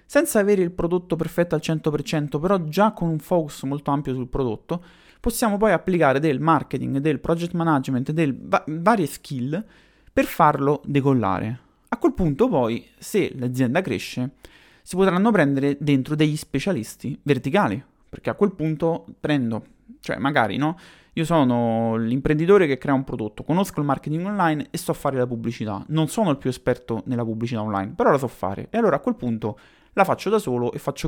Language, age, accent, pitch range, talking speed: Italian, 30-49, native, 125-170 Hz, 175 wpm